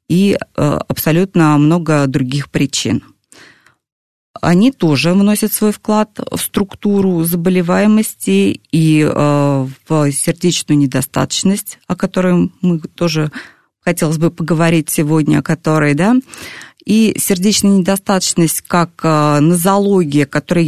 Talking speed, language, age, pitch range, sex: 90 wpm, Russian, 20-39, 150-195 Hz, female